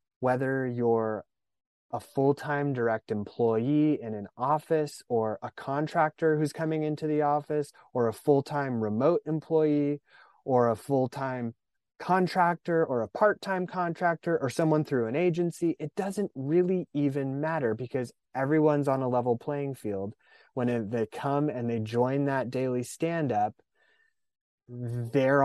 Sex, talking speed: male, 135 wpm